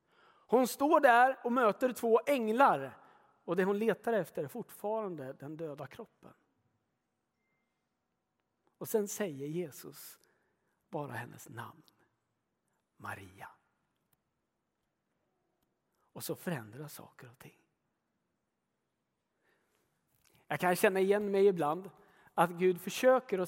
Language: Swedish